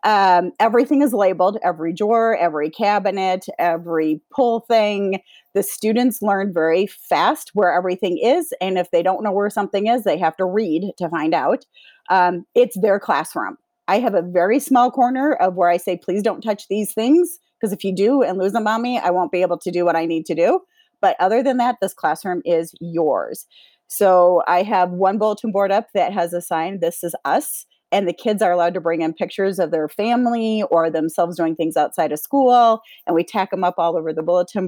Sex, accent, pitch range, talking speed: female, American, 175-230 Hz, 215 wpm